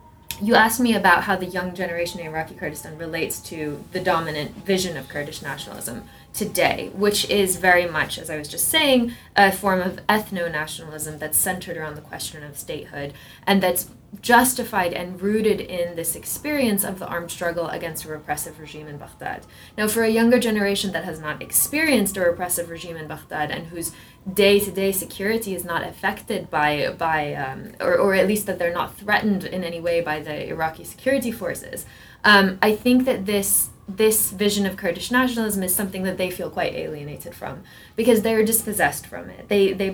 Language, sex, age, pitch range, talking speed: English, female, 20-39, 165-215 Hz, 185 wpm